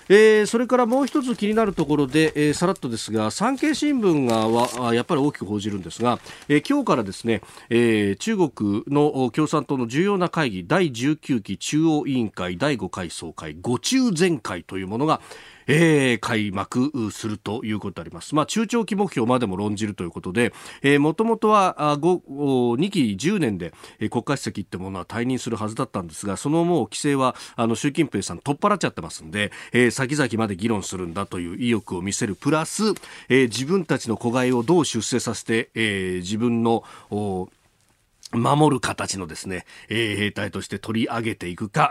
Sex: male